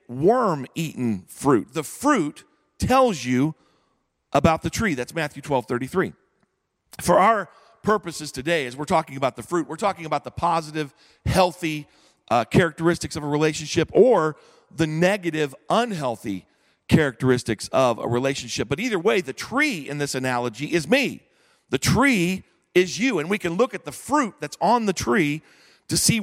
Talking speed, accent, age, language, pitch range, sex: 160 wpm, American, 40-59, English, 140-180 Hz, male